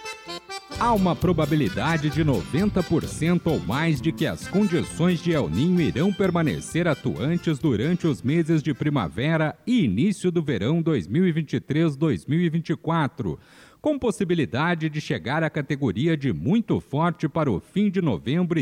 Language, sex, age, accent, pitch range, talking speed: Portuguese, male, 50-69, Brazilian, 150-175 Hz, 130 wpm